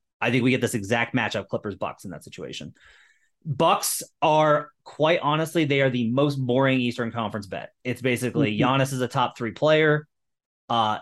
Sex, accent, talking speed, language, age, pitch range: male, American, 175 wpm, English, 30-49, 120-150 Hz